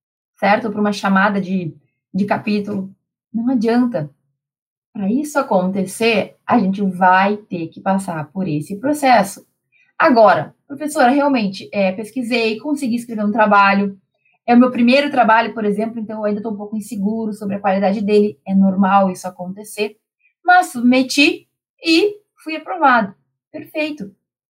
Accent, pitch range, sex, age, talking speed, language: Brazilian, 195-245 Hz, female, 20-39, 140 wpm, Portuguese